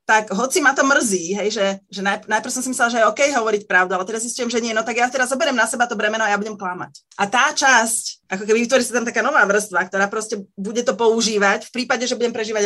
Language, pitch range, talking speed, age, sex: Slovak, 200-255 Hz, 270 wpm, 30-49, female